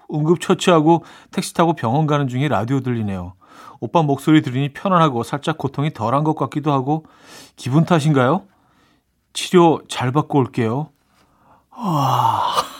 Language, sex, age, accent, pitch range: Korean, male, 40-59, native, 115-160 Hz